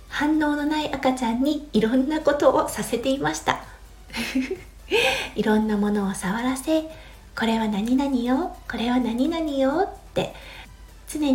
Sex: female